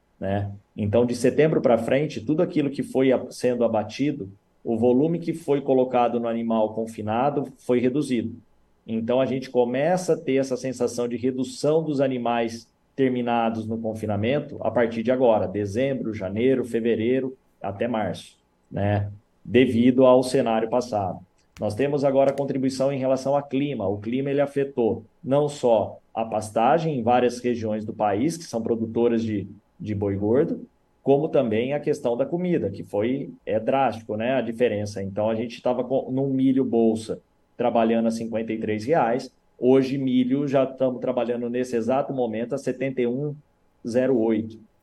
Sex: male